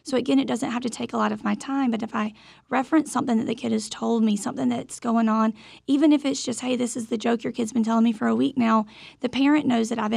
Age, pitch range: 30-49, 220-255 Hz